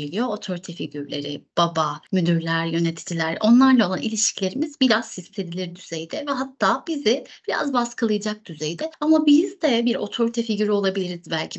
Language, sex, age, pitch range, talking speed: Turkish, female, 30-49, 170-235 Hz, 135 wpm